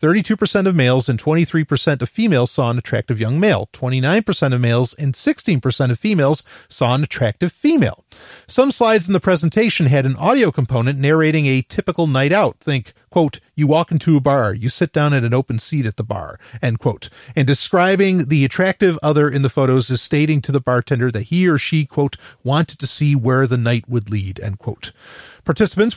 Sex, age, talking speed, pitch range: male, 40-59, 195 wpm, 125-165 Hz